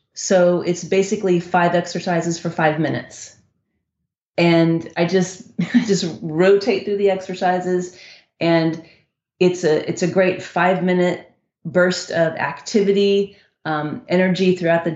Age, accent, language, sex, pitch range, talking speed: 30-49, American, English, female, 165-195 Hz, 125 wpm